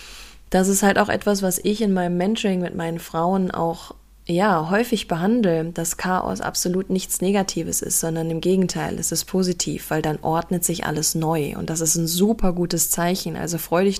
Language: German